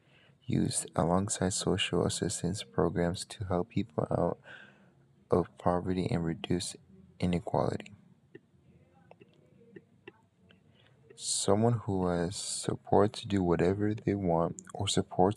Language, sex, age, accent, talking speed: English, male, 20-39, American, 100 wpm